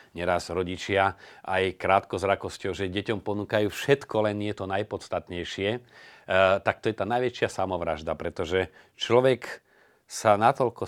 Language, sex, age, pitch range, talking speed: Slovak, male, 40-59, 90-105 Hz, 130 wpm